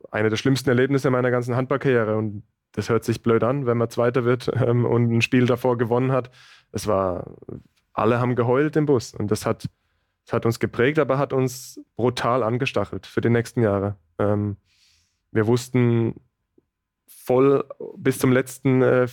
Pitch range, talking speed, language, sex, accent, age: 115-130 Hz, 175 wpm, German, male, German, 20-39